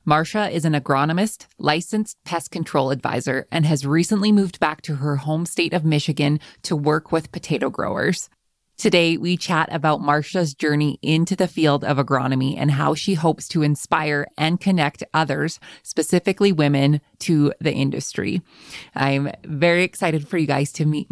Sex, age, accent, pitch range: female, 20-39, American, 145-175 Hz